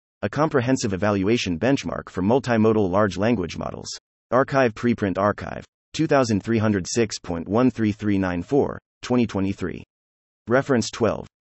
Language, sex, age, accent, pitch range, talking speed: English, male, 30-49, American, 95-125 Hz, 80 wpm